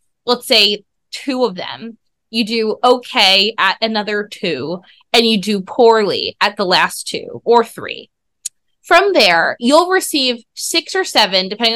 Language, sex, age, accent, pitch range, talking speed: English, female, 20-39, American, 200-255 Hz, 150 wpm